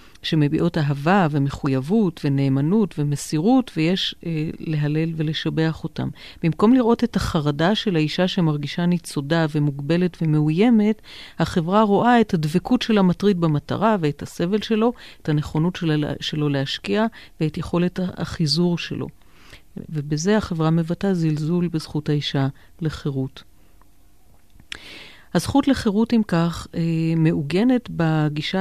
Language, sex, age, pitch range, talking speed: Hebrew, female, 50-69, 150-185 Hz, 110 wpm